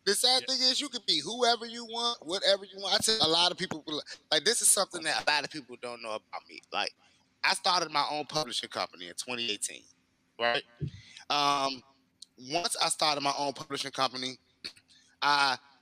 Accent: American